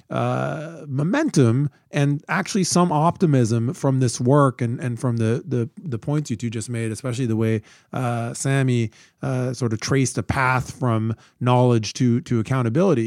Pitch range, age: 120-145 Hz, 40-59